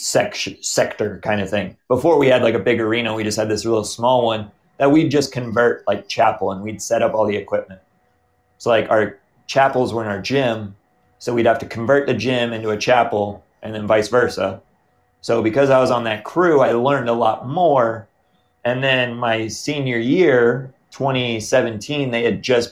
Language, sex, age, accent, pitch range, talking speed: English, male, 30-49, American, 105-125 Hz, 200 wpm